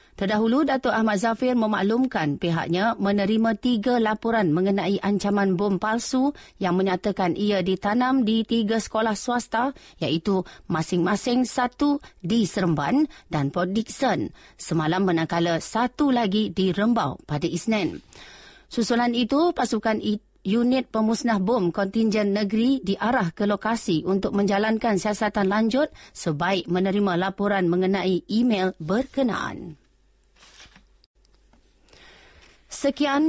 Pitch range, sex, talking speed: 190-245 Hz, female, 105 wpm